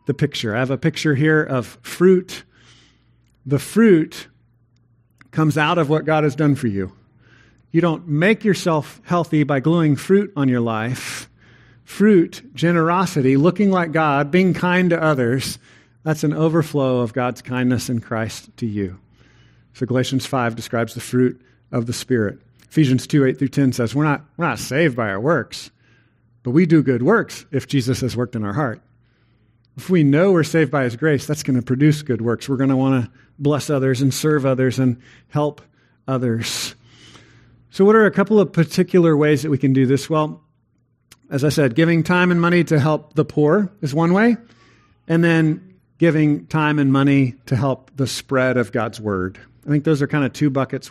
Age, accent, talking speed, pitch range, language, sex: 40-59, American, 190 wpm, 120-155 Hz, English, male